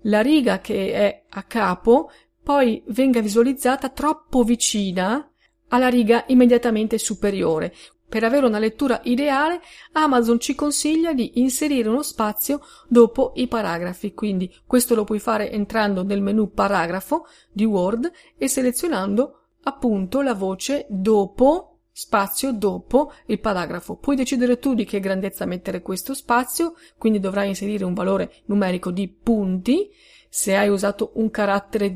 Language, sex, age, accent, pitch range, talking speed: Italian, female, 40-59, native, 200-255 Hz, 135 wpm